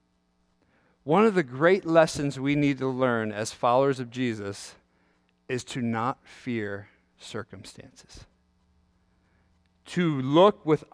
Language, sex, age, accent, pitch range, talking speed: English, male, 40-59, American, 120-200 Hz, 115 wpm